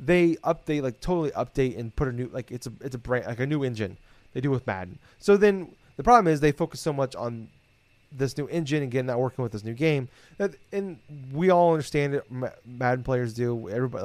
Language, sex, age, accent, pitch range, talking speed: English, male, 30-49, American, 115-145 Hz, 230 wpm